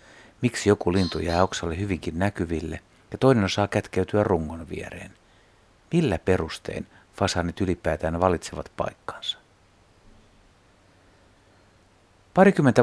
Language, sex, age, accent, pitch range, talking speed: Finnish, male, 60-79, native, 85-105 Hz, 95 wpm